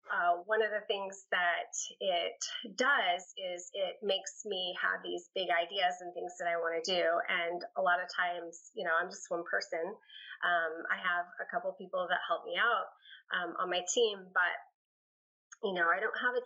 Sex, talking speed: female, 200 wpm